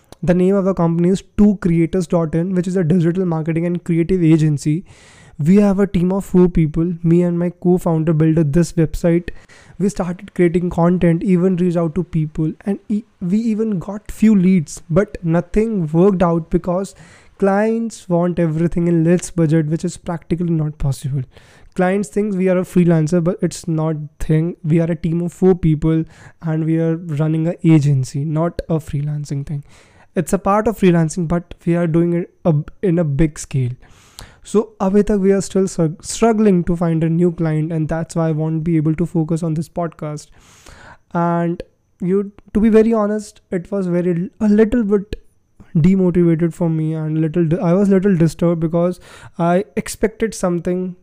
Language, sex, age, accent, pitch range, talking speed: Hindi, male, 20-39, native, 160-185 Hz, 180 wpm